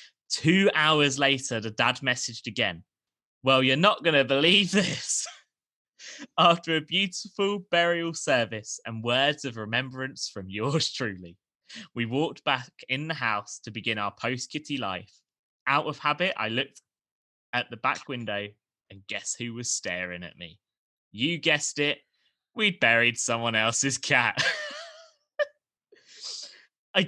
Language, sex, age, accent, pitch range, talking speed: English, male, 20-39, British, 120-180 Hz, 140 wpm